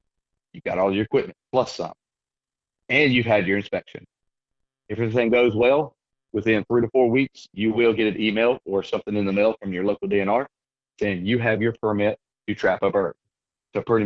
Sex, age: male, 30-49